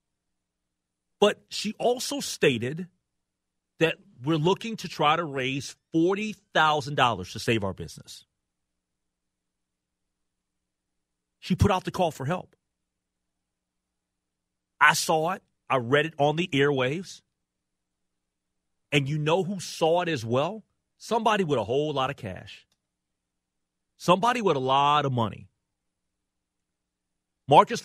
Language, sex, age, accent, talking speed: English, male, 40-59, American, 115 wpm